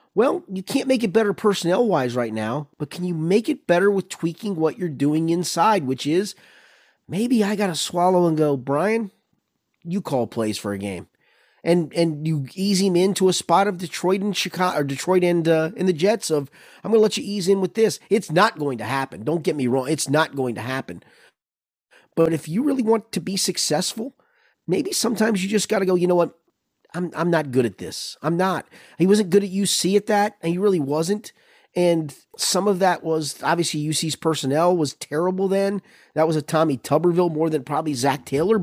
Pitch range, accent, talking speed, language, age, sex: 150-200 Hz, American, 210 wpm, English, 30-49, male